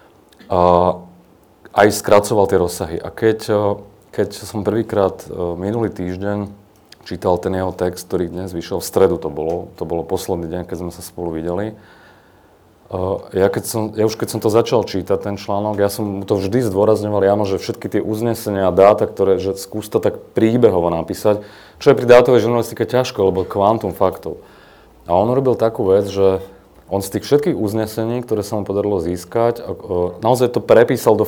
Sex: male